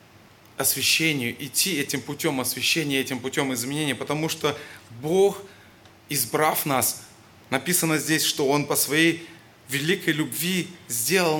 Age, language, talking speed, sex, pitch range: 20-39, Russian, 115 wpm, male, 110-160 Hz